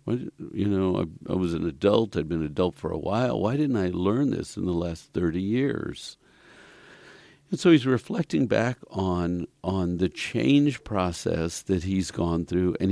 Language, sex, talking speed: English, male, 180 wpm